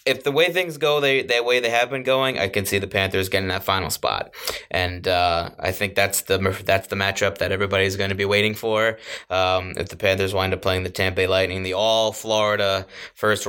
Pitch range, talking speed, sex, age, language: 95-110 Hz, 230 wpm, male, 20-39, English